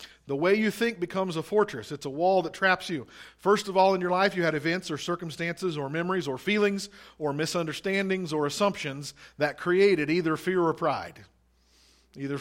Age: 40-59